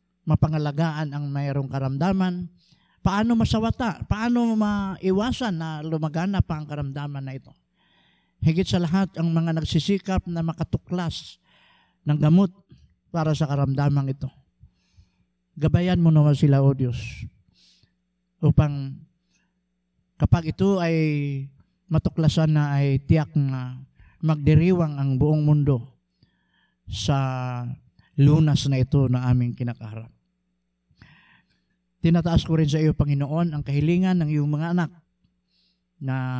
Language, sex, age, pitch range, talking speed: Filipino, male, 50-69, 130-165 Hz, 115 wpm